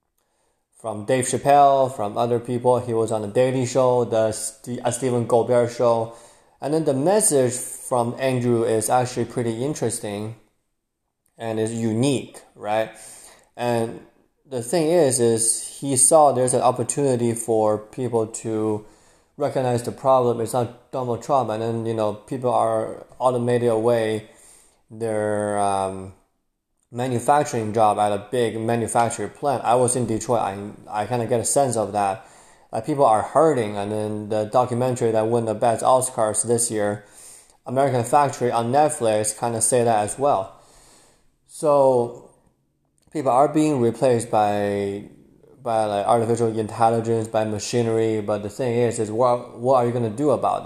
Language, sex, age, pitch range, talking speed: English, male, 20-39, 110-125 Hz, 155 wpm